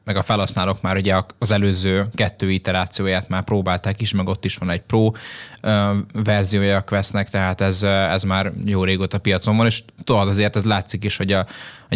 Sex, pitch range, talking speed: male, 95-110 Hz, 185 wpm